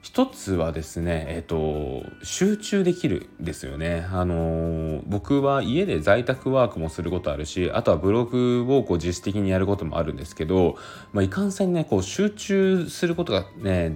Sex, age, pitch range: male, 20-39, 80-115 Hz